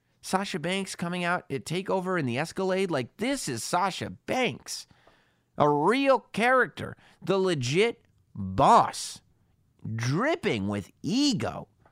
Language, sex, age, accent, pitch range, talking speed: English, male, 30-49, American, 120-185 Hz, 115 wpm